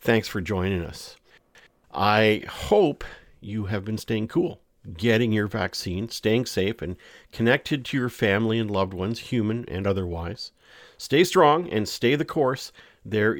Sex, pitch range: male, 95-120 Hz